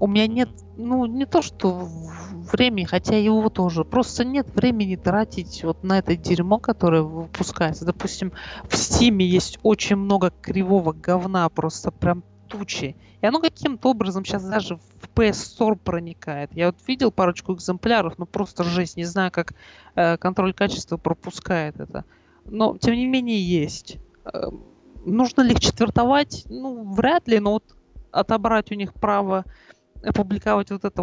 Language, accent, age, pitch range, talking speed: Russian, native, 20-39, 170-215 Hz, 155 wpm